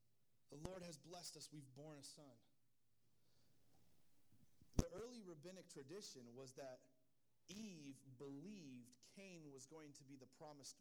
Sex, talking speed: male, 135 wpm